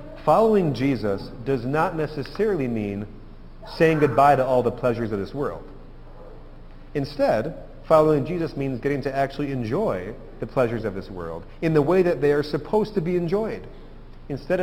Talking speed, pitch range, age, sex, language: 160 wpm, 115-155 Hz, 40-59, male, English